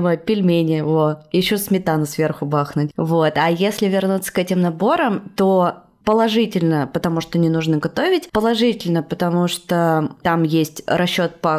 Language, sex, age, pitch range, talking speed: Russian, female, 20-39, 165-215 Hz, 140 wpm